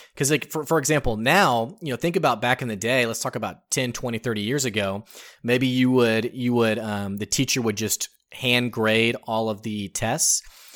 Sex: male